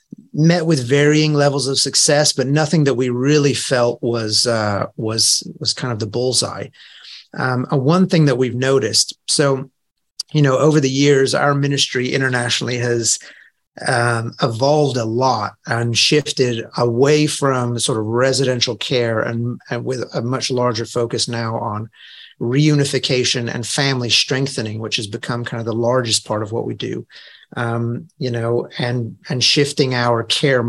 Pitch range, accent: 115-140 Hz, American